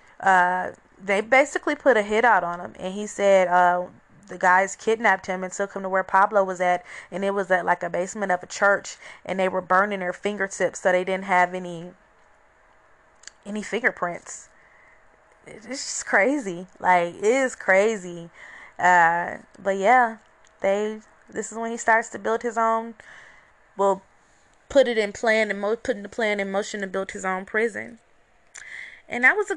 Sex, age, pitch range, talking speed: female, 20-39, 185-220 Hz, 180 wpm